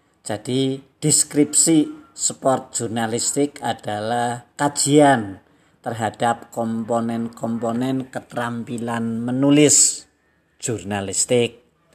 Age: 50-69